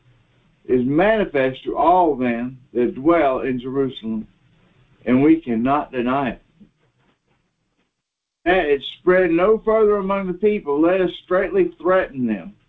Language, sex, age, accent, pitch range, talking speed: English, male, 60-79, American, 140-200 Hz, 130 wpm